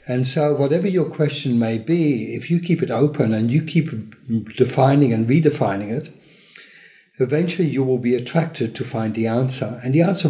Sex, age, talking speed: male, 60-79, 180 wpm